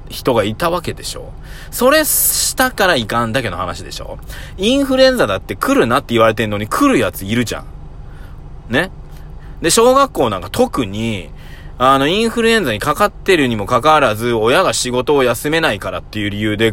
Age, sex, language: 20-39, male, Japanese